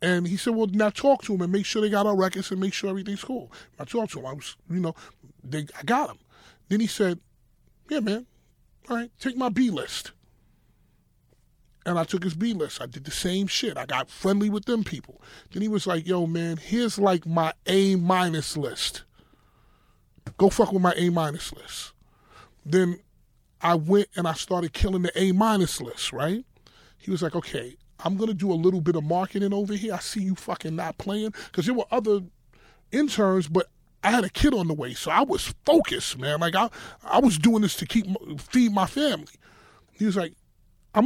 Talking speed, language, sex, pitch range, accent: 210 wpm, English, male, 175-225 Hz, American